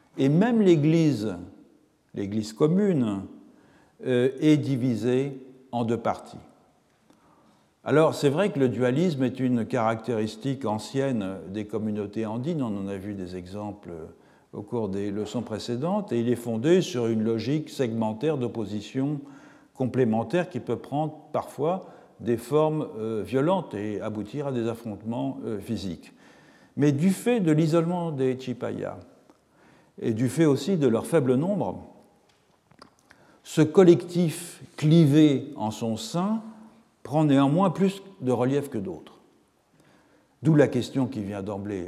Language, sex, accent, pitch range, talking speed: French, male, French, 115-155 Hz, 130 wpm